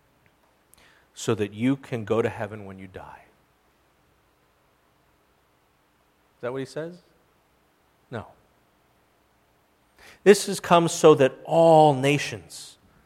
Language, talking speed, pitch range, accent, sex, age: English, 105 wpm, 110-130 Hz, American, male, 40-59